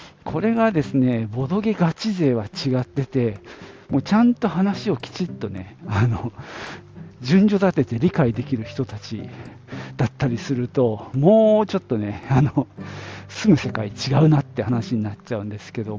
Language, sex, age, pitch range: Japanese, male, 50-69, 115-180 Hz